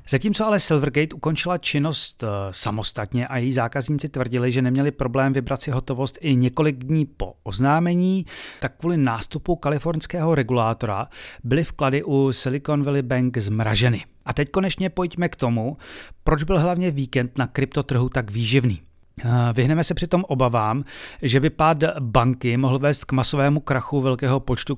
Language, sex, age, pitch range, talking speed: Czech, male, 30-49, 125-165 Hz, 150 wpm